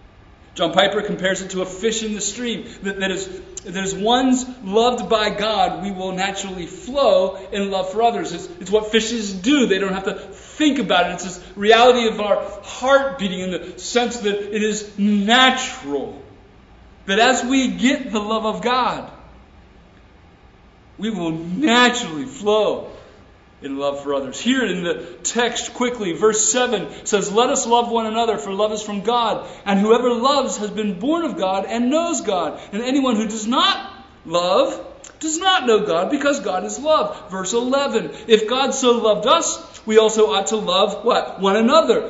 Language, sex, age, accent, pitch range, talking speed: English, male, 40-59, American, 195-255 Hz, 180 wpm